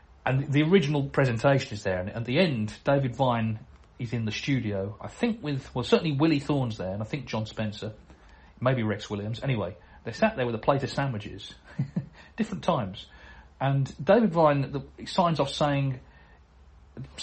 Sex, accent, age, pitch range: male, British, 40-59, 105-155 Hz